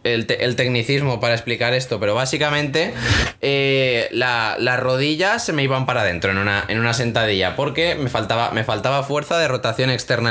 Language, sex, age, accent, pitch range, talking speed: Spanish, male, 20-39, Spanish, 115-145 Hz, 185 wpm